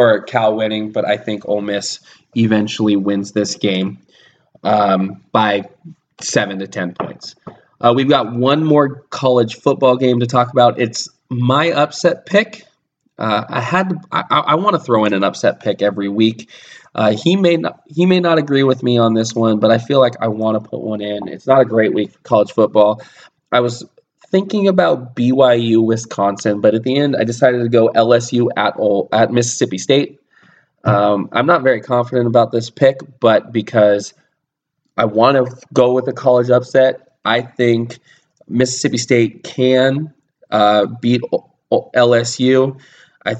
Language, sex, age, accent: English, male, 20-39, American